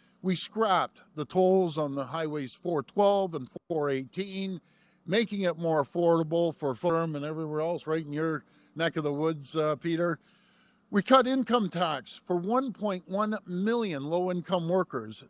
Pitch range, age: 160-200 Hz, 50-69